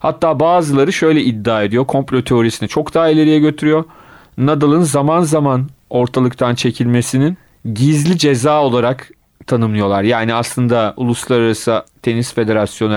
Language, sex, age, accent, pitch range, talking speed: Turkish, male, 40-59, native, 115-150 Hz, 115 wpm